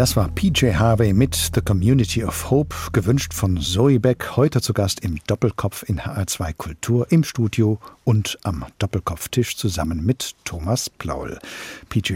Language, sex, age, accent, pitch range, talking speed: German, male, 50-69, German, 100-120 Hz, 155 wpm